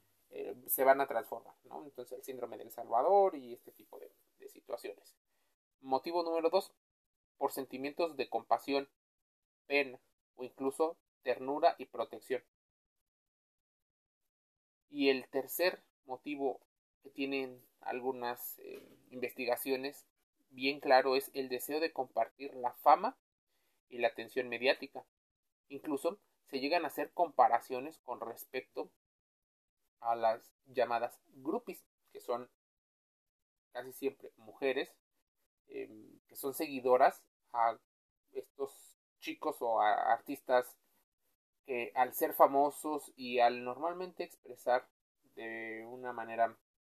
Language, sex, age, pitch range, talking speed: Spanish, male, 30-49, 120-155 Hz, 115 wpm